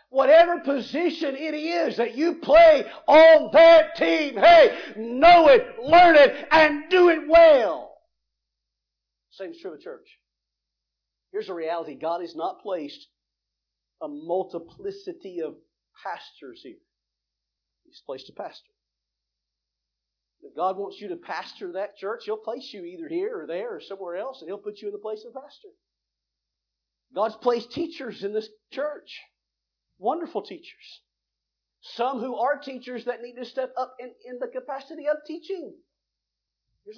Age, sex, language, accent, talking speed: 50-69, male, English, American, 150 wpm